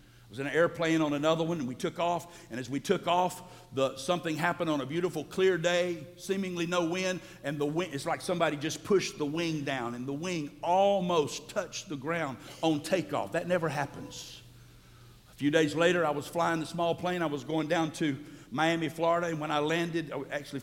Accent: American